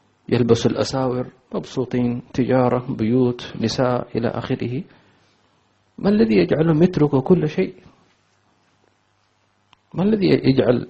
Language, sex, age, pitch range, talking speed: English, male, 40-59, 105-130 Hz, 95 wpm